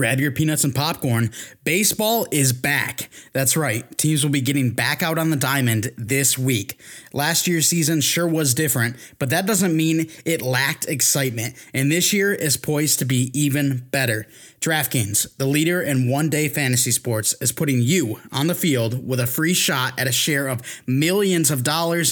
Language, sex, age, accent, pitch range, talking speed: English, male, 20-39, American, 135-165 Hz, 180 wpm